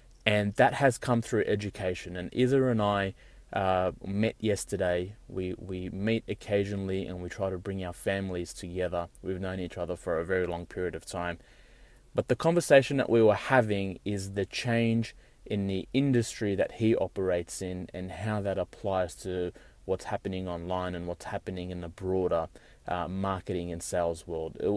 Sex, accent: male, Australian